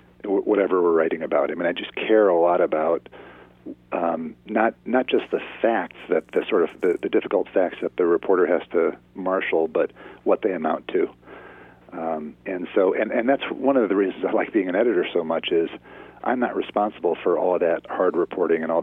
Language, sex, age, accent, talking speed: English, male, 40-59, American, 210 wpm